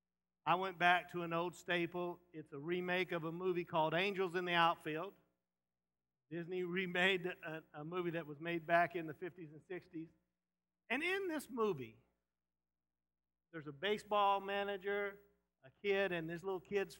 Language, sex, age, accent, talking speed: English, male, 50-69, American, 160 wpm